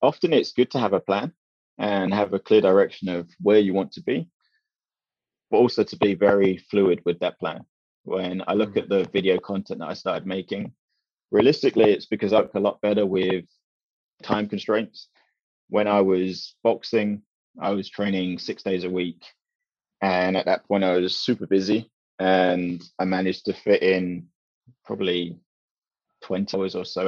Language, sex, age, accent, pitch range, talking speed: English, male, 20-39, British, 95-105 Hz, 175 wpm